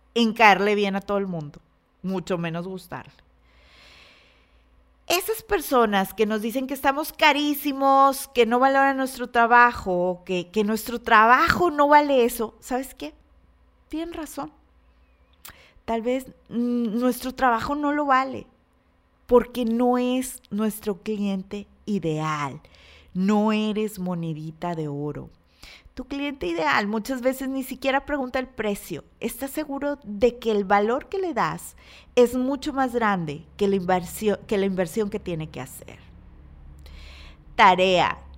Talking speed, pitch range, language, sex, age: 135 wpm, 185-270 Hz, Spanish, female, 30-49